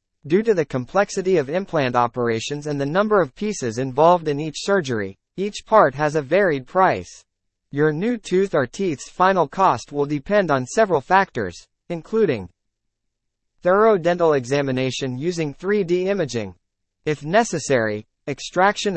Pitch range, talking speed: 130-185 Hz, 140 wpm